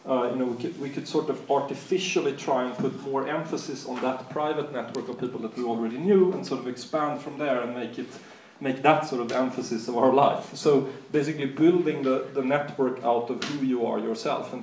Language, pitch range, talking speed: English, 125-160 Hz, 225 wpm